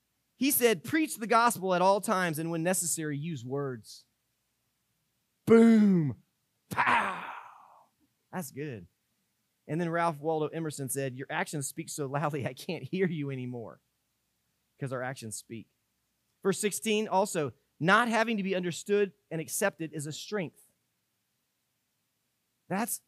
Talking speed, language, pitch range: 135 wpm, English, 145-220 Hz